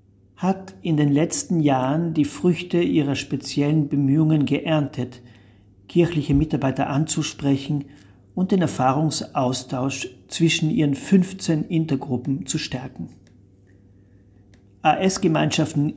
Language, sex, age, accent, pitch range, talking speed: English, male, 50-69, German, 125-150 Hz, 90 wpm